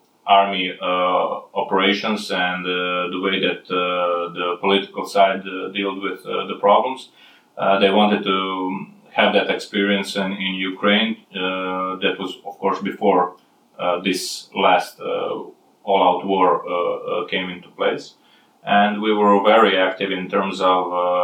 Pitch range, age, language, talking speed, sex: 90-100 Hz, 20-39, Polish, 145 wpm, male